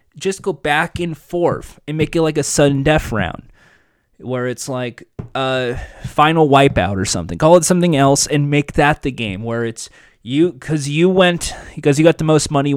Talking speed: 200 wpm